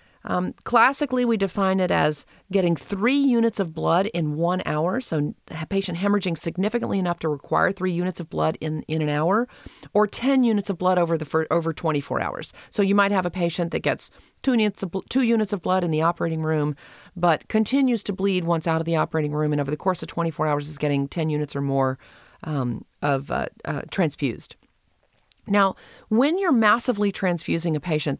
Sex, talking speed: female, 200 wpm